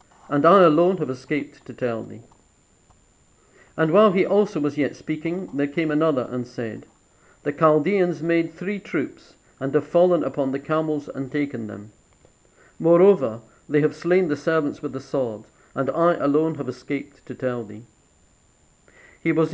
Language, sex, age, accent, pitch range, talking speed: English, male, 50-69, British, 130-160 Hz, 165 wpm